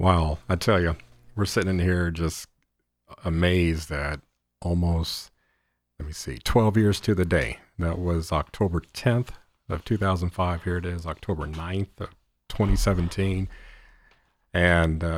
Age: 40-59